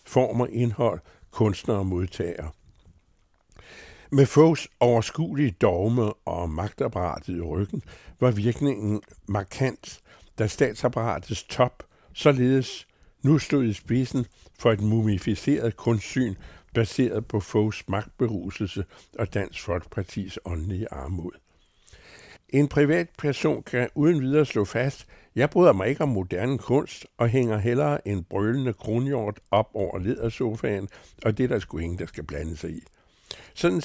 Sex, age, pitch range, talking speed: male, 60-79, 95-125 Hz, 130 wpm